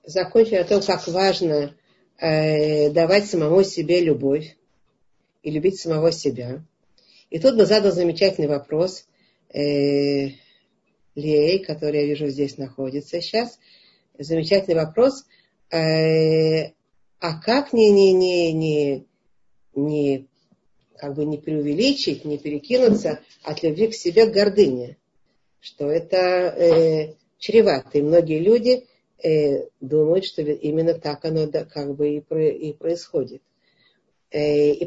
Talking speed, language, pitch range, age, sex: 115 wpm, Russian, 150-200 Hz, 40-59, female